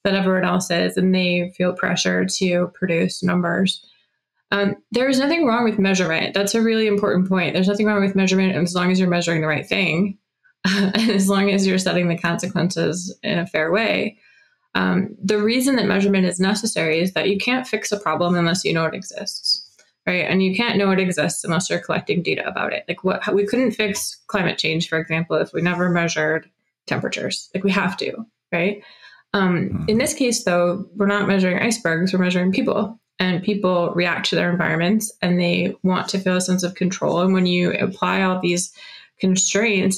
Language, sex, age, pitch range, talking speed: English, female, 20-39, 175-205 Hz, 200 wpm